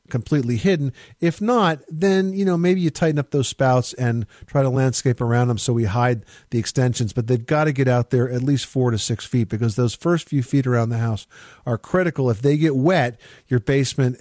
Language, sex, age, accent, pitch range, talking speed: English, male, 50-69, American, 115-145 Hz, 225 wpm